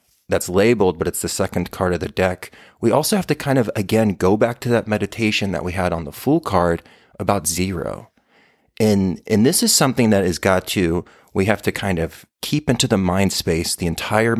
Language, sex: English, male